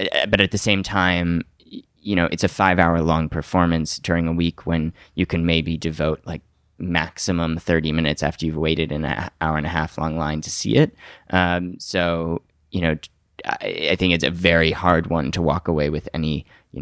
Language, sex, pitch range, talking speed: English, male, 80-90 Hz, 200 wpm